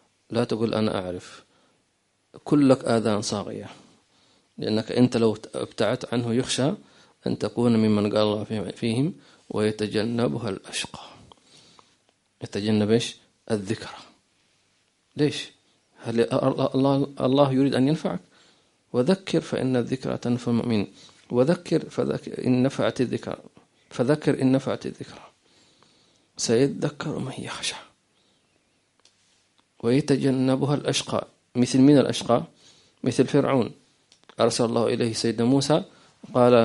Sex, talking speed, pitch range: male, 95 wpm, 115-140 Hz